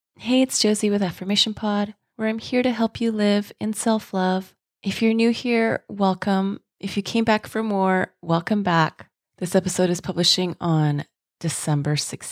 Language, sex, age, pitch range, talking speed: English, female, 30-49, 160-200 Hz, 170 wpm